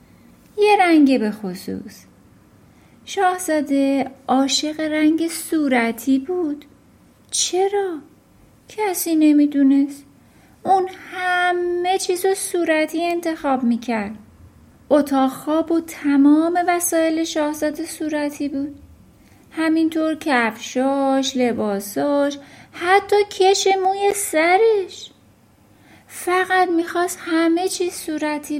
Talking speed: 80 wpm